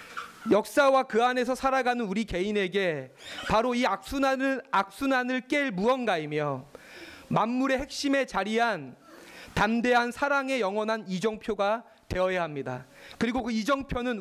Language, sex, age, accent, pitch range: Korean, male, 30-49, native, 180-255 Hz